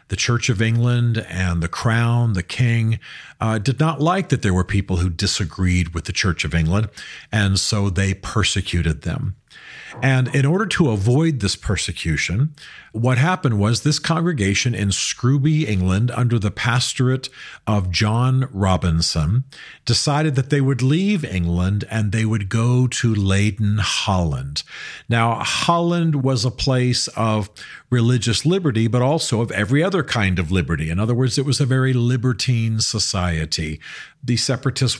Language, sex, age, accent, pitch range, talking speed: English, male, 50-69, American, 95-130 Hz, 155 wpm